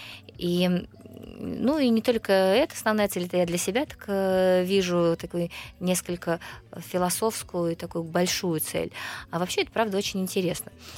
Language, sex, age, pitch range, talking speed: Russian, female, 20-39, 170-195 Hz, 150 wpm